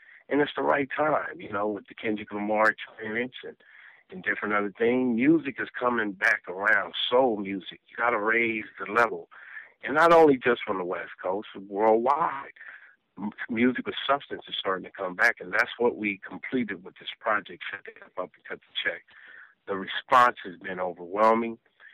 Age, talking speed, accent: 50-69, 185 wpm, American